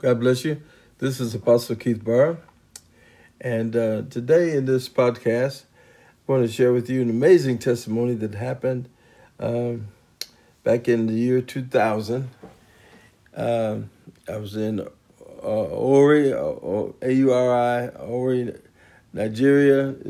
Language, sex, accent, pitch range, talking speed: English, male, American, 115-130 Hz, 130 wpm